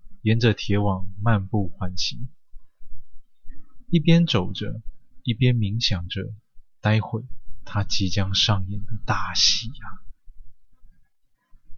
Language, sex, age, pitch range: Chinese, male, 20-39, 100-120 Hz